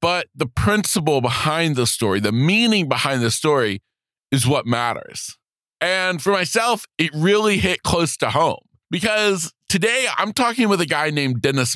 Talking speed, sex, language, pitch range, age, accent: 165 wpm, male, English, 145-190 Hz, 40-59, American